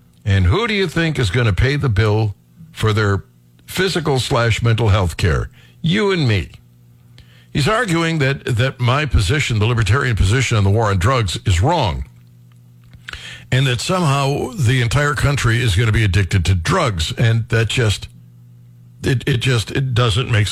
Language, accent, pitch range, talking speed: English, American, 100-140 Hz, 165 wpm